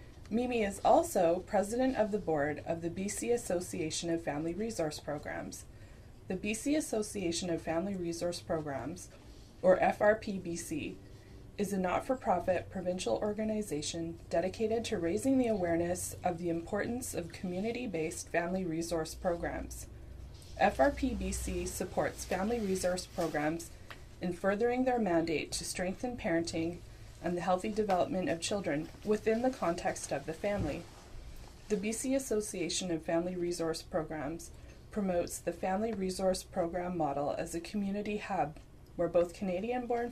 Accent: American